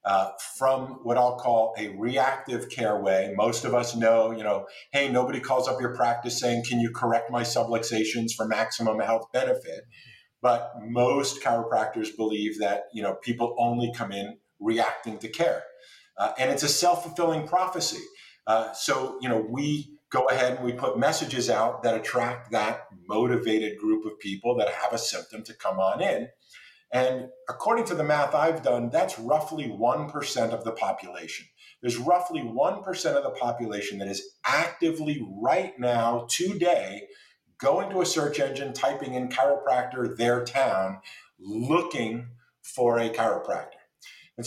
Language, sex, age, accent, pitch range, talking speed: English, male, 50-69, American, 115-145 Hz, 160 wpm